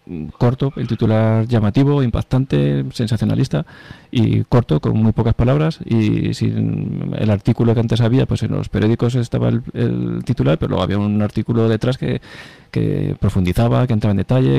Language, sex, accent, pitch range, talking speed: Spanish, male, Spanish, 105-125 Hz, 165 wpm